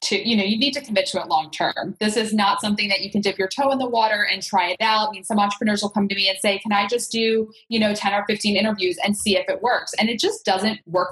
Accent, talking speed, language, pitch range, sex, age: American, 310 wpm, English, 185-220 Hz, female, 20-39